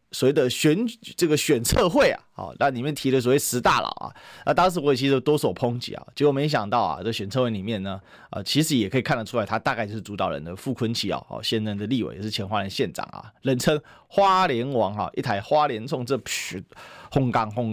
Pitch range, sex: 105-135 Hz, male